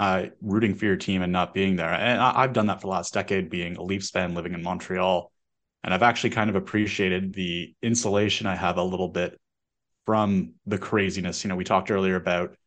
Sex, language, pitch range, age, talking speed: male, English, 90-100 Hz, 30-49, 220 wpm